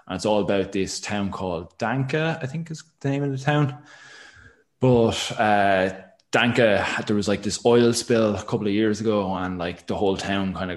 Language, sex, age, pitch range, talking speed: English, male, 20-39, 95-110 Hz, 205 wpm